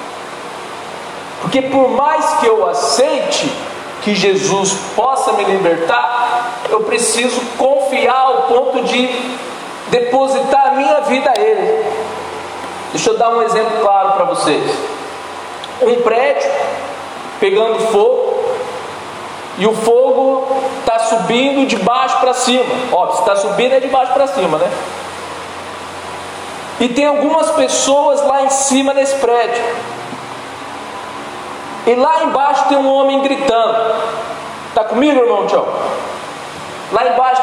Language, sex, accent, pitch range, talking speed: Portuguese, male, Brazilian, 230-285 Hz, 120 wpm